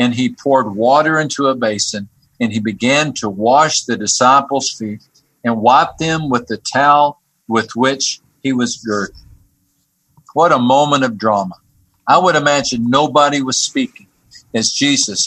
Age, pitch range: 50-69, 115-140 Hz